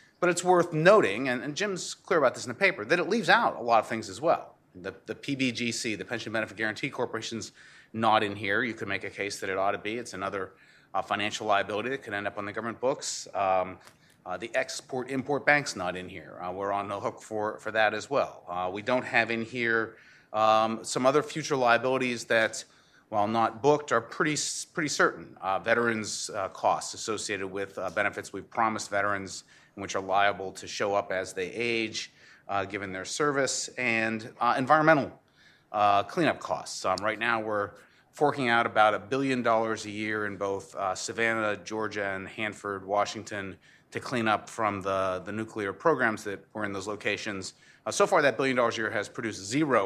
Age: 30-49